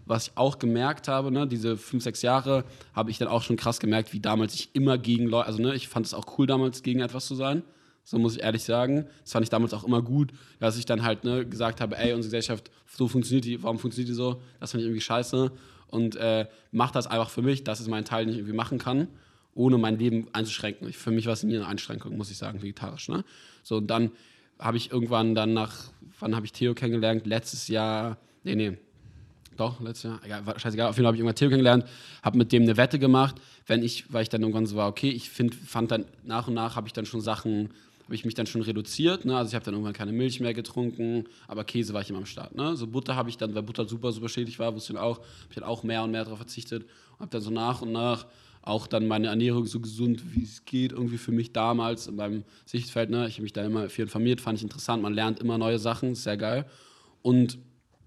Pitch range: 110-125 Hz